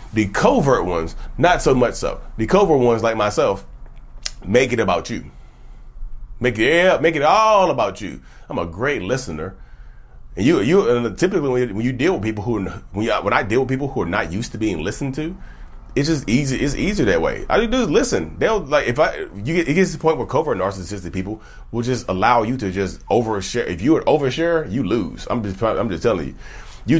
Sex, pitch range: male, 100-135 Hz